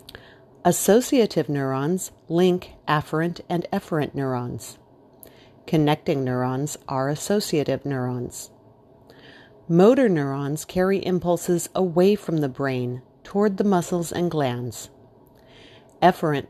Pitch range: 135-175 Hz